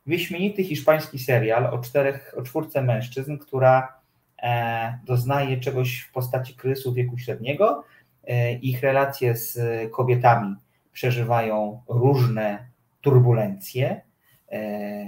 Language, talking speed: Polish, 105 wpm